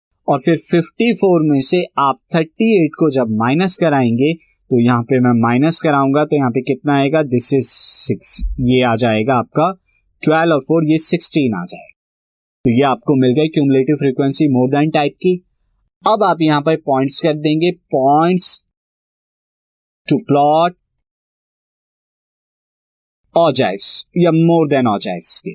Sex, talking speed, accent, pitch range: male, 150 wpm, native, 130-170 Hz